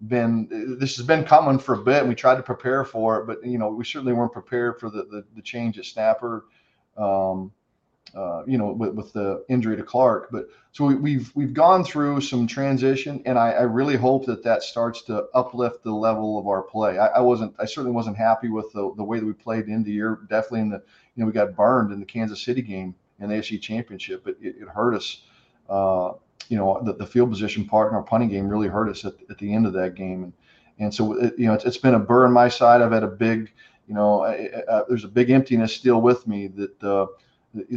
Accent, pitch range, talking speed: American, 105-125 Hz, 255 wpm